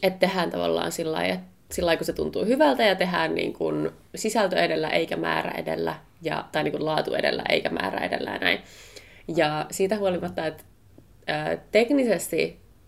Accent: native